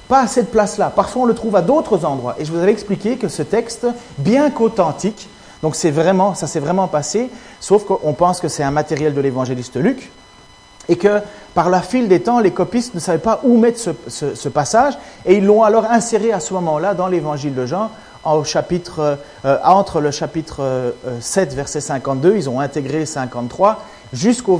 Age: 40-59